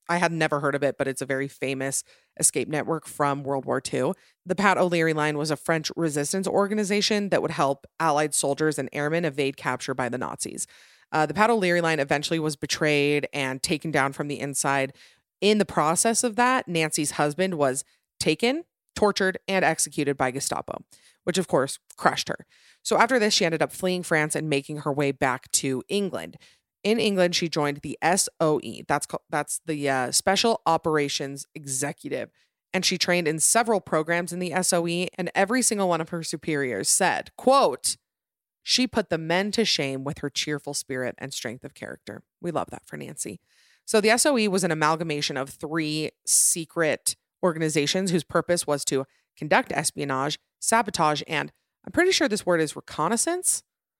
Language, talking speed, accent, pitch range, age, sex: English, 180 wpm, American, 145-185 Hz, 30-49, female